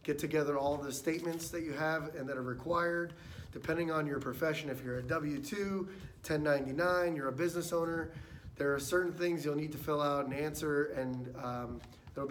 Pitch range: 140-170 Hz